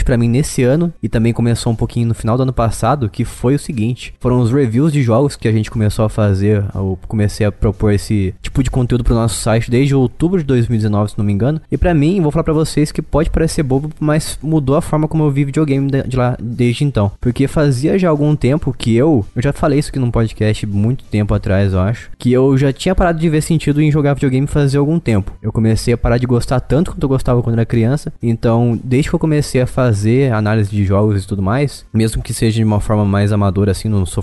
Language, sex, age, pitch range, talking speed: Portuguese, male, 20-39, 110-145 Hz, 250 wpm